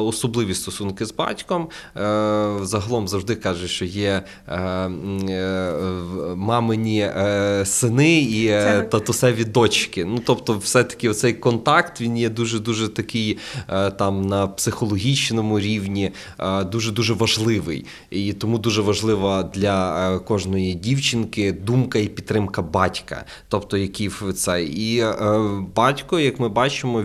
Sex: male